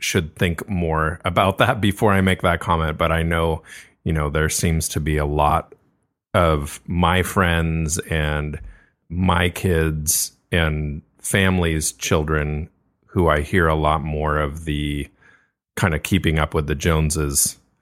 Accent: American